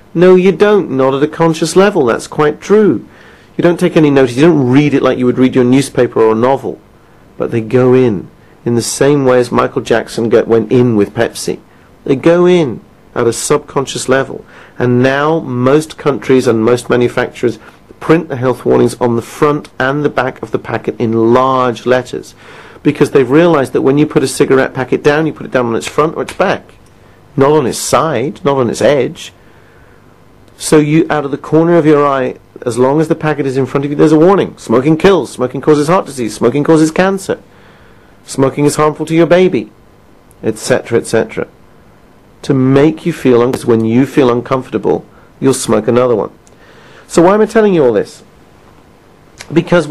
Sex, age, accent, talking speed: male, 40-59, British, 195 wpm